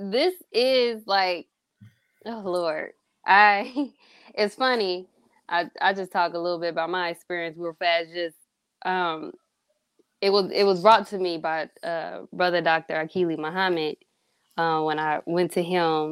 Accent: American